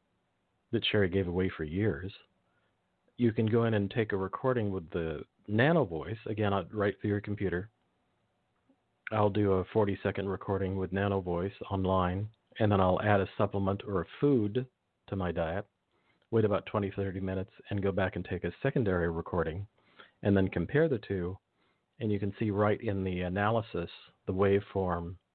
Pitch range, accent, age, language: 95-110 Hz, American, 40-59, English